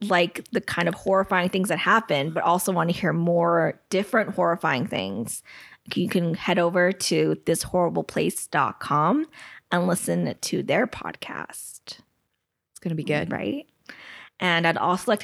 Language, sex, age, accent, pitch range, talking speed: English, female, 20-39, American, 170-200 Hz, 150 wpm